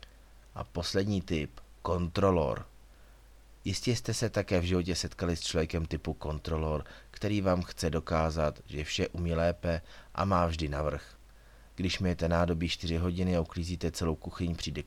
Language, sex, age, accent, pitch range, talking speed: Czech, male, 30-49, native, 80-95 Hz, 150 wpm